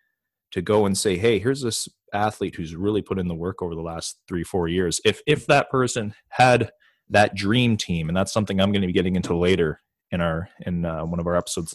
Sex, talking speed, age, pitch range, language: male, 235 wpm, 30-49, 90-110 Hz, English